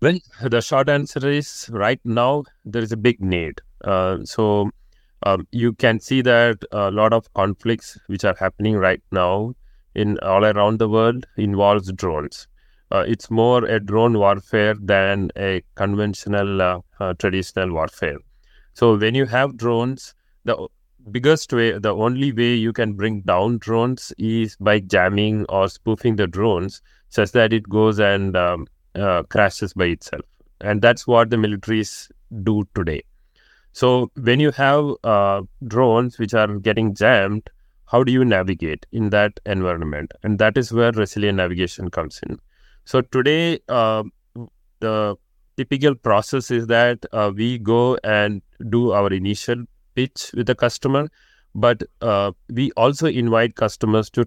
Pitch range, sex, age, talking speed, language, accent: 100-120 Hz, male, 30-49, 155 wpm, English, Indian